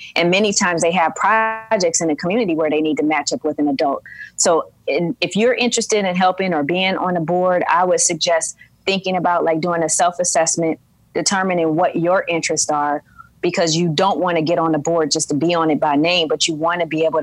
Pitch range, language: 155-175 Hz, English